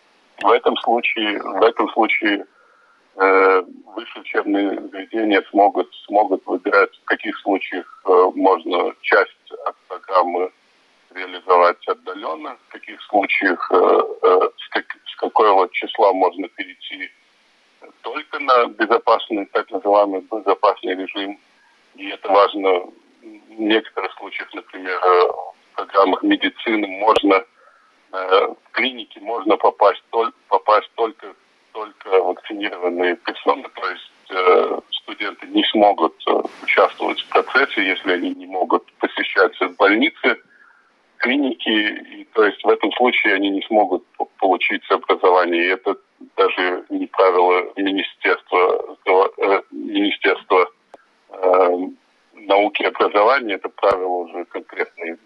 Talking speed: 110 wpm